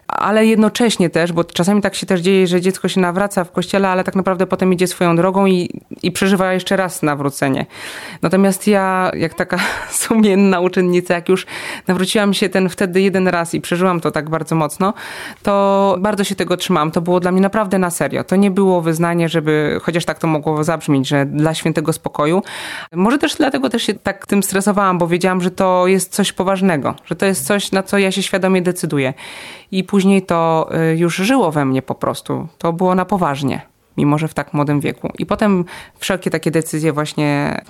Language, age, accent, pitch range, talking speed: Polish, 20-39, native, 155-195 Hz, 200 wpm